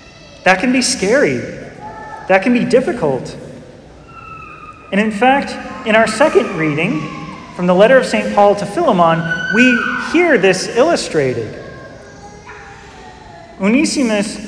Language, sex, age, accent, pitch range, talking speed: English, male, 30-49, American, 190-250 Hz, 115 wpm